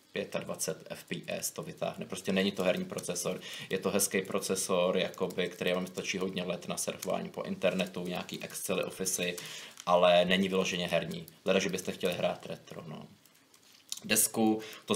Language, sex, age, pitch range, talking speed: Czech, male, 20-39, 90-95 Hz, 155 wpm